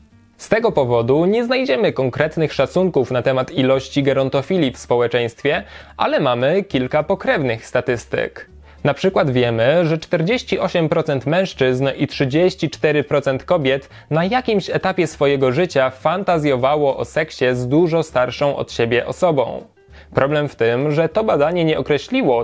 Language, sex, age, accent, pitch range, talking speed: Polish, male, 20-39, native, 130-175 Hz, 130 wpm